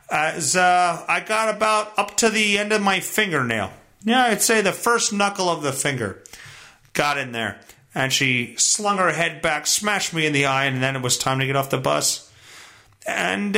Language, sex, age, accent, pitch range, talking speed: English, male, 40-59, American, 155-230 Hz, 205 wpm